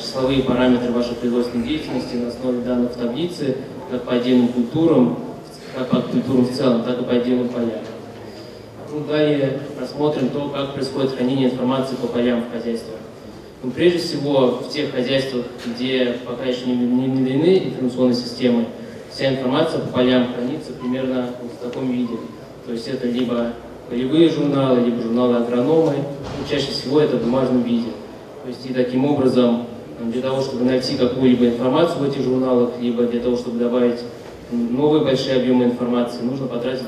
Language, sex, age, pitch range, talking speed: Russian, male, 20-39, 120-130 Hz, 155 wpm